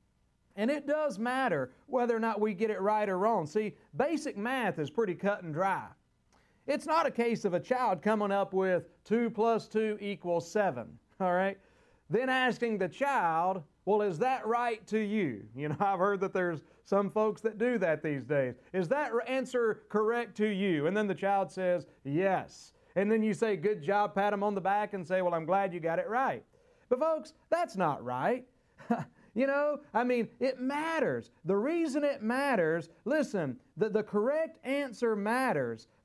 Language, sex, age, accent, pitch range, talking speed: English, male, 40-59, American, 180-250 Hz, 190 wpm